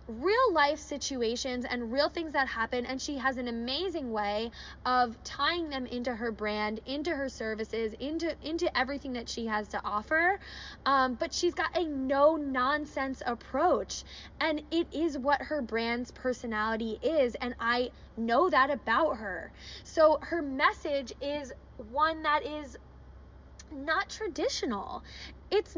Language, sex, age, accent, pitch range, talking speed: English, female, 10-29, American, 245-330 Hz, 145 wpm